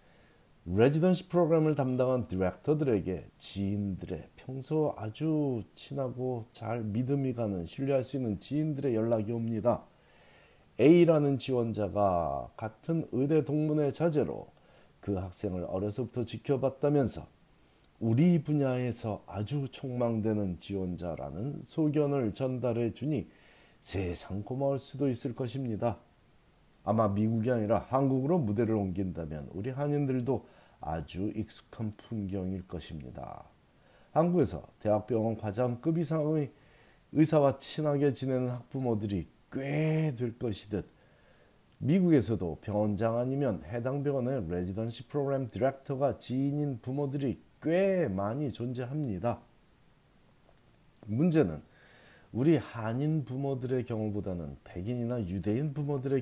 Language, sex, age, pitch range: Korean, male, 40-59, 105-140 Hz